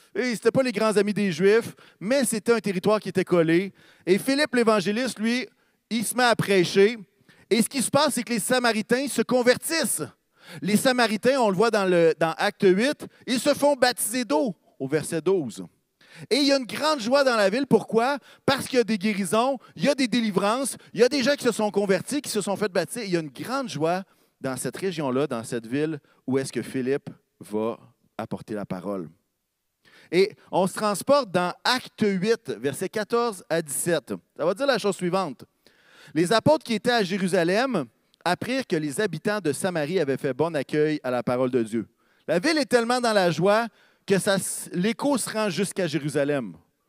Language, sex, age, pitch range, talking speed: French, male, 40-59, 170-235 Hz, 205 wpm